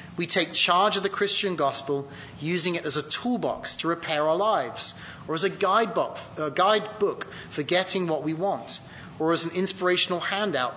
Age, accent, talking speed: 30-49, British, 175 wpm